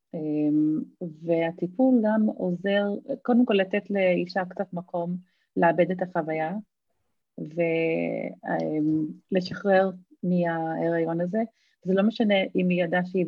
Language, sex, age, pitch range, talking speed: Hebrew, female, 30-49, 180-225 Hz, 100 wpm